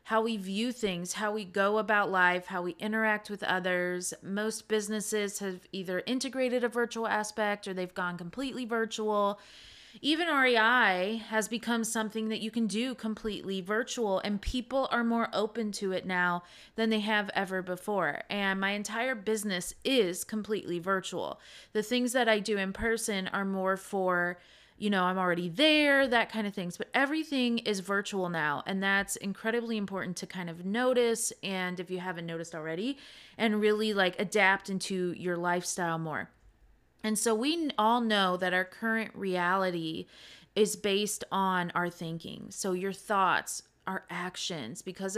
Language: English